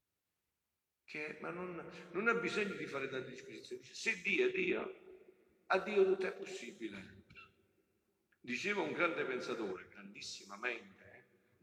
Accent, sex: native, male